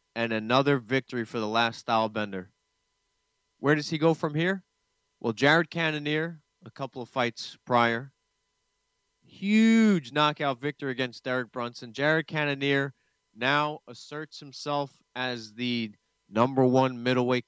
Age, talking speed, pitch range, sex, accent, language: 30-49, 130 wpm, 110-145 Hz, male, American, English